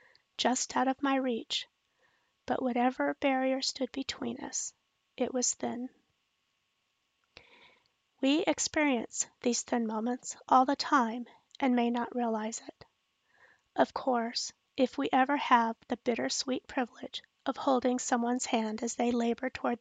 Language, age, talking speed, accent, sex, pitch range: English, 40-59, 135 wpm, American, female, 240-265 Hz